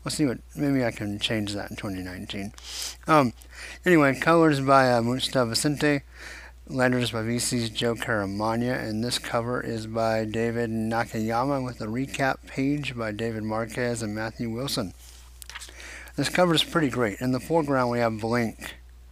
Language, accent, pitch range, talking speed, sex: English, American, 100-125 Hz, 160 wpm, male